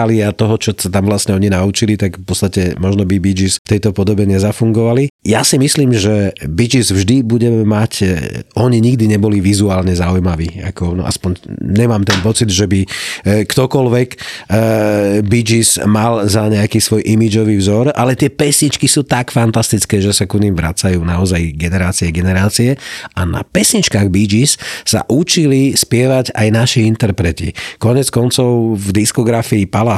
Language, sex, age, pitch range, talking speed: Slovak, male, 40-59, 95-115 Hz, 165 wpm